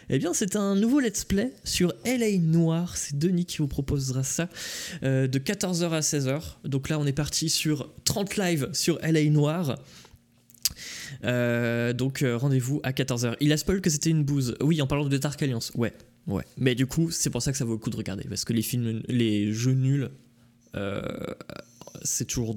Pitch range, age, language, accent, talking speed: 120-150 Hz, 20-39, French, French, 200 wpm